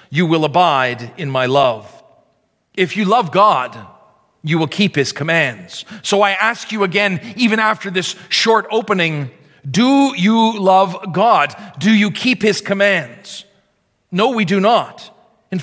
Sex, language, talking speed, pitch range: male, English, 150 wpm, 165-210 Hz